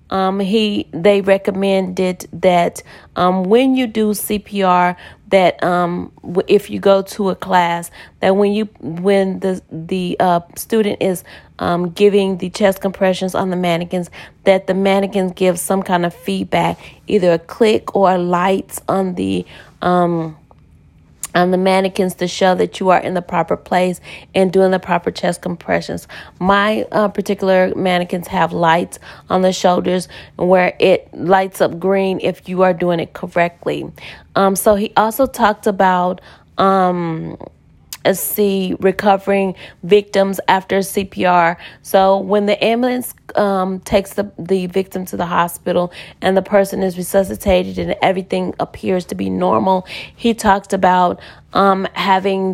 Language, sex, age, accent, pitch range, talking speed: English, female, 30-49, American, 180-195 Hz, 145 wpm